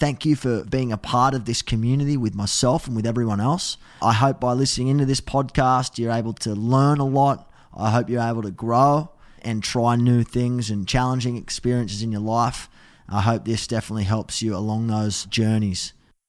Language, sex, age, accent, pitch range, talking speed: English, male, 20-39, Australian, 110-135 Hz, 195 wpm